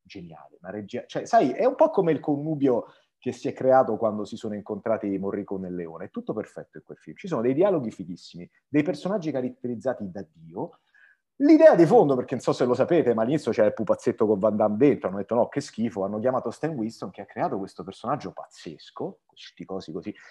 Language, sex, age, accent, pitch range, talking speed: Italian, male, 30-49, native, 105-150 Hz, 220 wpm